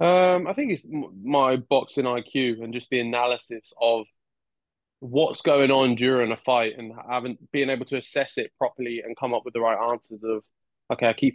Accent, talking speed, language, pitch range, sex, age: British, 195 wpm, English, 115-135 Hz, male, 20-39